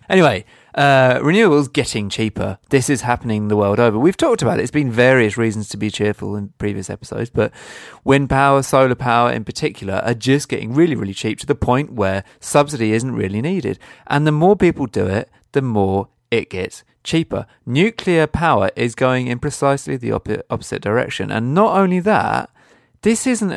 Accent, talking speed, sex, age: British, 180 wpm, male, 30-49